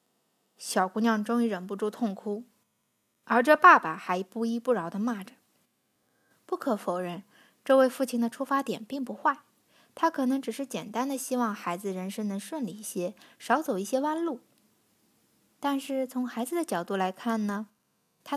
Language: Chinese